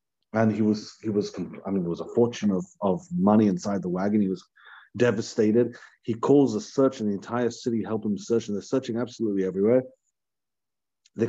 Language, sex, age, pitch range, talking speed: English, male, 30-49, 105-140 Hz, 195 wpm